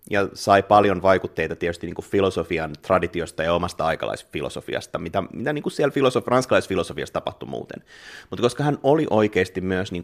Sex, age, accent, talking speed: male, 30-49, native, 165 wpm